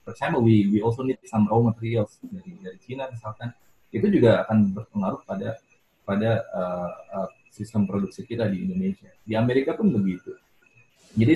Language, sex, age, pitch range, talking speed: Indonesian, male, 20-39, 105-135 Hz, 165 wpm